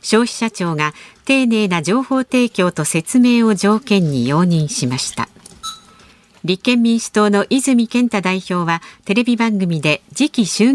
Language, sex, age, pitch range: Japanese, female, 50-69, 165-245 Hz